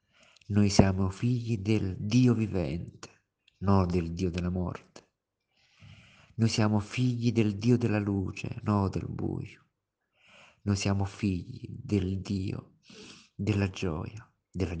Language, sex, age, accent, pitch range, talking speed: Italian, male, 50-69, native, 95-110 Hz, 120 wpm